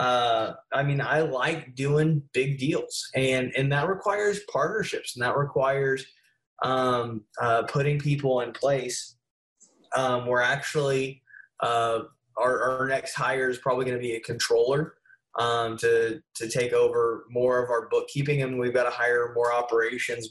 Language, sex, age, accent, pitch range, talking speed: English, male, 20-39, American, 125-145 Hz, 155 wpm